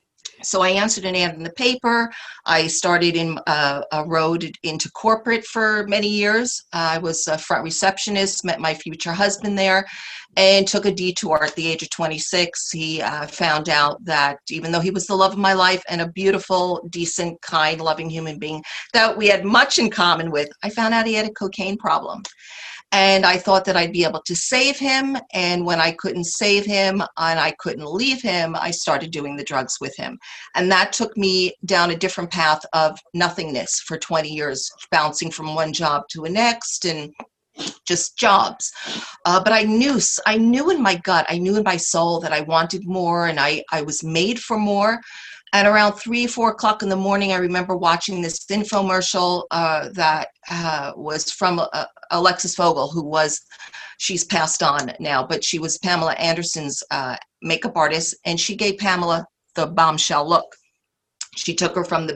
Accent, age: American, 50-69